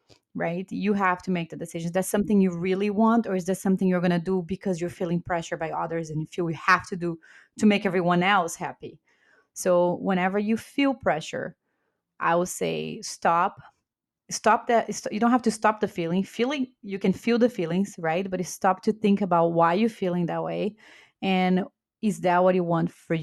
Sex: female